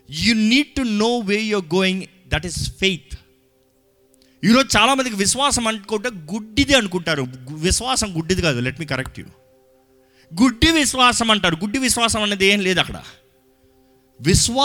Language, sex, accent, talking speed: Telugu, male, native, 155 wpm